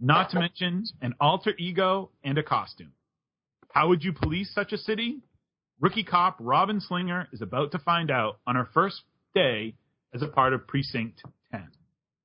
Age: 40-59